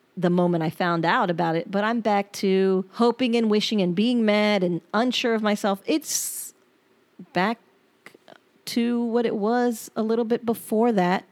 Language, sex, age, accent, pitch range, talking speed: English, female, 40-59, American, 185-240 Hz, 170 wpm